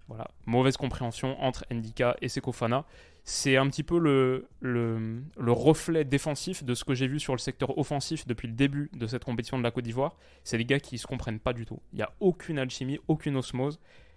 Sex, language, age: male, French, 20-39